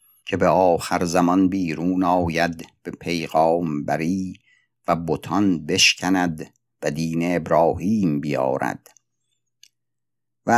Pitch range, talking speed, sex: 80-95 Hz, 95 wpm, male